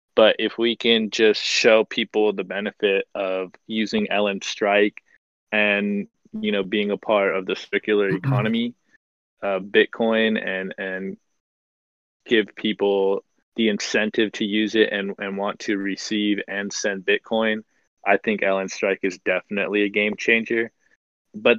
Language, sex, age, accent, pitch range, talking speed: English, male, 20-39, American, 100-110 Hz, 145 wpm